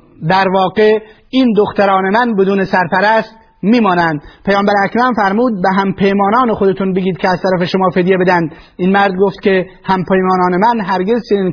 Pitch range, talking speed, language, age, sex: 190-225 Hz, 160 wpm, Persian, 30-49, male